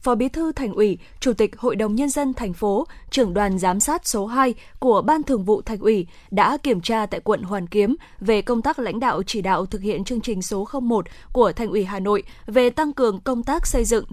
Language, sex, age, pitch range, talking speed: Vietnamese, female, 10-29, 210-260 Hz, 240 wpm